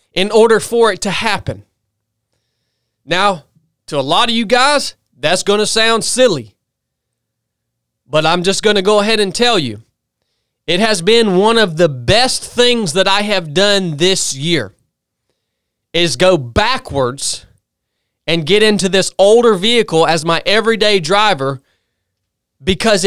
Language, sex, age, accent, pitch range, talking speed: English, male, 20-39, American, 140-230 Hz, 145 wpm